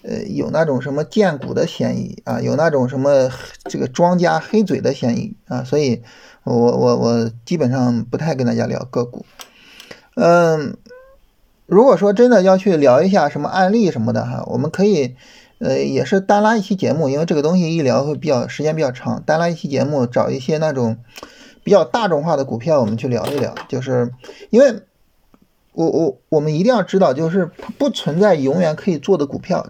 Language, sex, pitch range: Chinese, male, 130-185 Hz